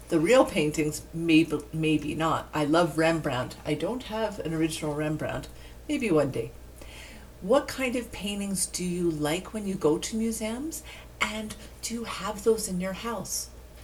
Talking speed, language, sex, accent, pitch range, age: 165 wpm, English, female, American, 160-225 Hz, 50-69